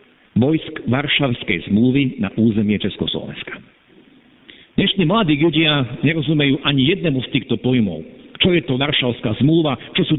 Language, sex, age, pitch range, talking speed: Slovak, male, 50-69, 125-175 Hz, 130 wpm